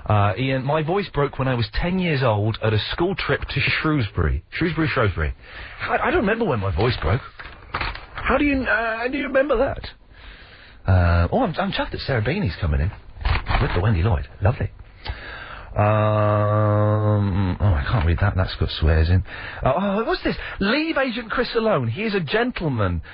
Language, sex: English, male